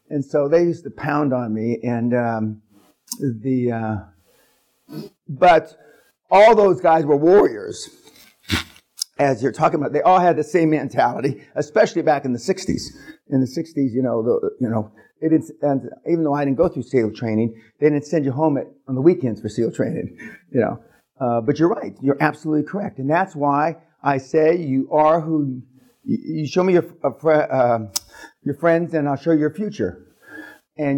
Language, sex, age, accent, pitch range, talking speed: English, male, 50-69, American, 135-165 Hz, 185 wpm